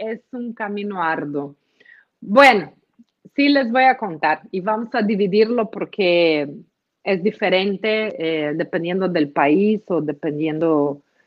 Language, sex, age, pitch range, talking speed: Spanish, female, 40-59, 190-245 Hz, 120 wpm